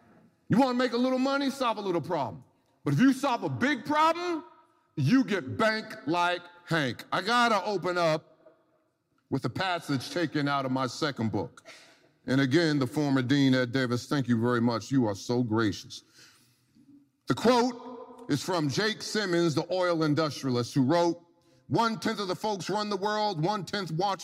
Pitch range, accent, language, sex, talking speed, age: 140-210 Hz, American, English, male, 180 wpm, 50-69